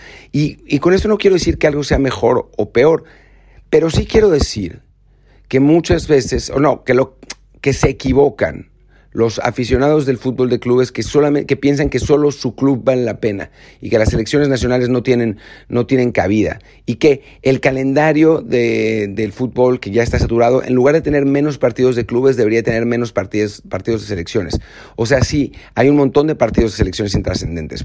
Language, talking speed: Spanish, 195 wpm